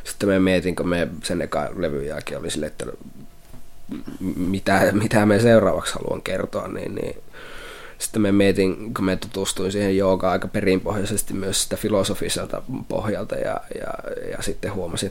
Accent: native